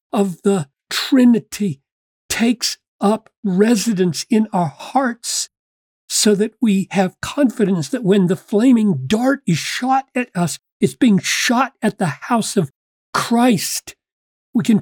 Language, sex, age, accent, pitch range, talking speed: English, male, 50-69, American, 170-225 Hz, 135 wpm